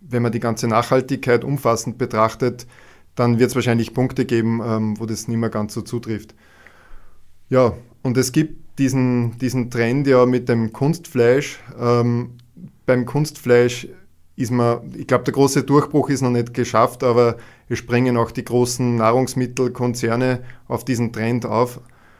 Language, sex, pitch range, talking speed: German, male, 120-130 Hz, 150 wpm